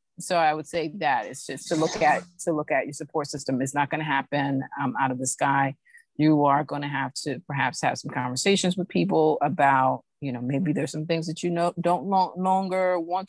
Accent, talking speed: American, 225 wpm